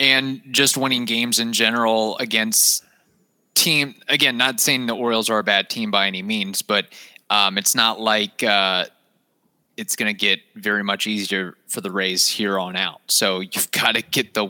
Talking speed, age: 185 wpm, 20-39